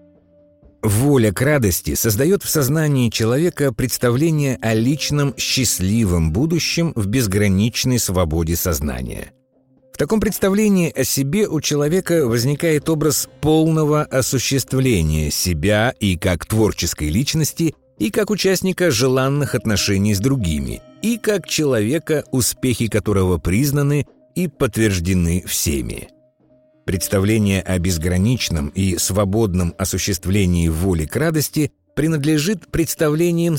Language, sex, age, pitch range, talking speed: Russian, male, 50-69, 95-150 Hz, 105 wpm